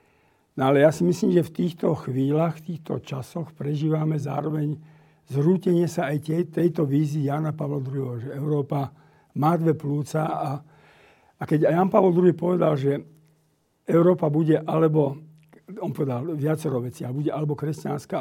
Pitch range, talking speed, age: 140-160 Hz, 150 wpm, 50-69